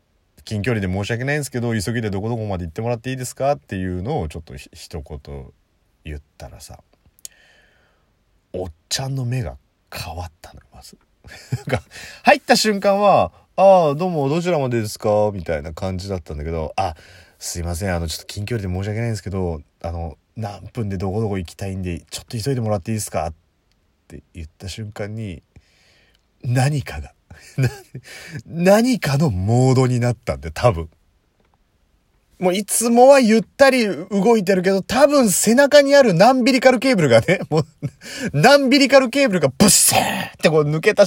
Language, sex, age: Japanese, male, 30-49